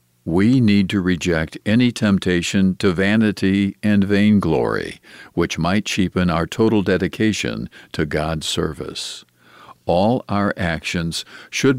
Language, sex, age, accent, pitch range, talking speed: English, male, 50-69, American, 85-105 Hz, 115 wpm